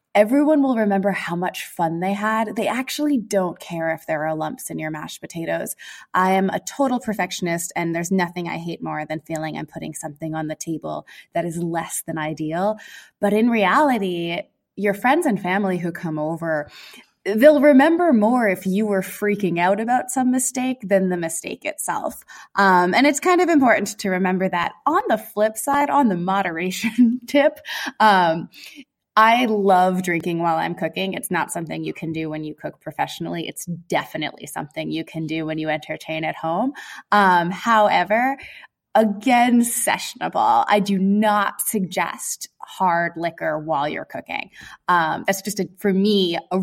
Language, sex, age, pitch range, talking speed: English, female, 20-39, 170-235 Hz, 170 wpm